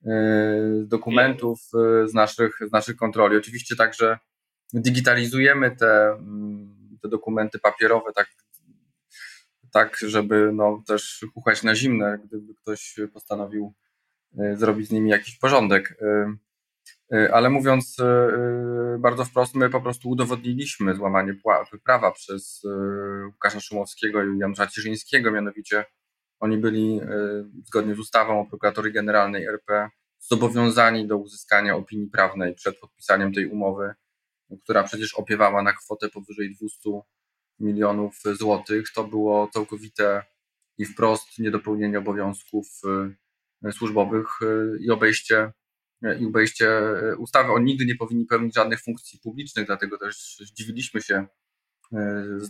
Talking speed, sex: 110 wpm, male